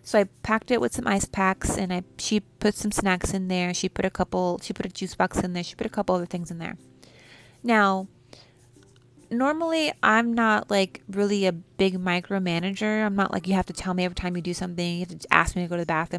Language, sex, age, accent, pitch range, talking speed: English, female, 20-39, American, 175-210 Hz, 250 wpm